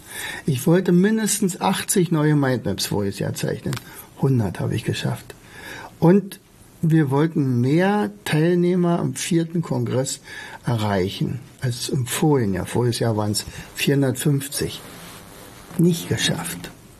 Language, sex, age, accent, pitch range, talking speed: German, male, 60-79, German, 120-165 Hz, 115 wpm